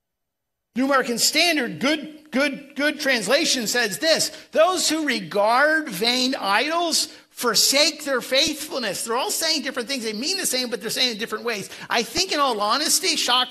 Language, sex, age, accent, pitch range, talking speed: English, male, 50-69, American, 195-275 Hz, 170 wpm